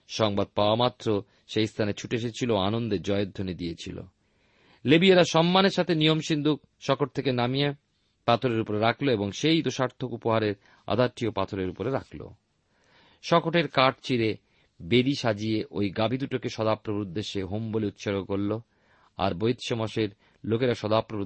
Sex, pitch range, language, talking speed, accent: male, 105-135 Hz, Bengali, 135 wpm, native